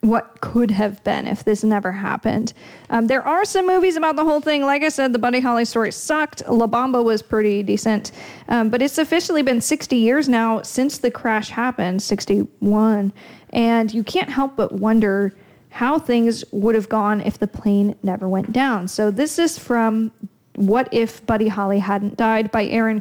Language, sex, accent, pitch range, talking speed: English, female, American, 210-250 Hz, 190 wpm